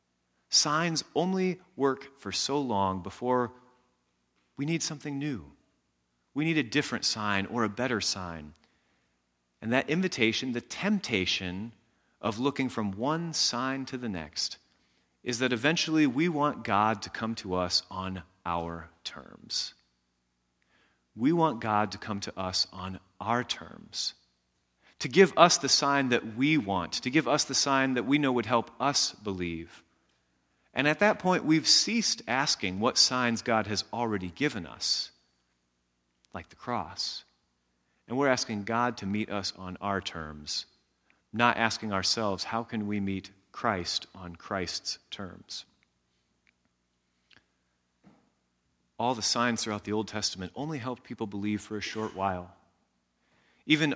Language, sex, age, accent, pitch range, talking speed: English, male, 30-49, American, 85-130 Hz, 145 wpm